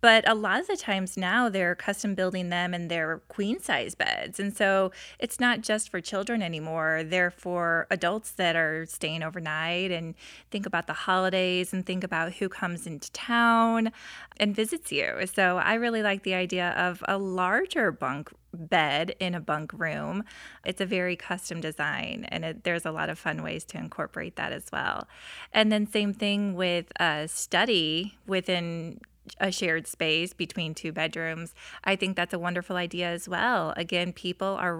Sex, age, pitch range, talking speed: female, 20-39, 170-200 Hz, 180 wpm